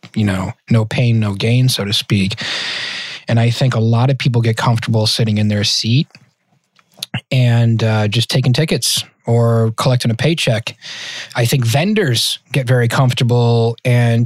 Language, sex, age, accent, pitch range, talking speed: English, male, 20-39, American, 115-145 Hz, 160 wpm